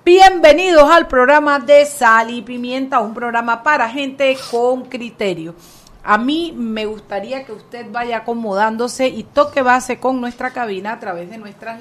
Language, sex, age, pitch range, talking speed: Spanish, female, 40-59, 210-265 Hz, 160 wpm